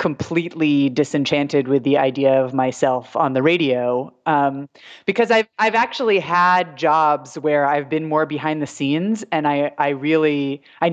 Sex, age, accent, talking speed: female, 30-49, American, 160 wpm